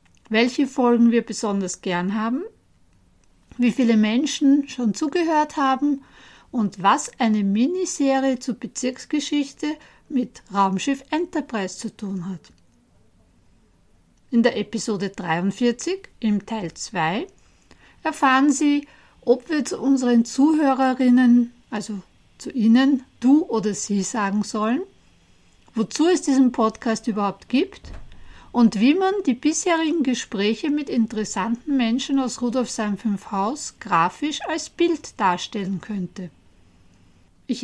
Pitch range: 205-275 Hz